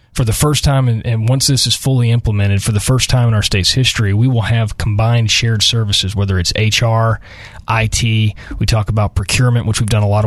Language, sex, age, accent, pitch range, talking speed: English, male, 30-49, American, 100-120 Hz, 215 wpm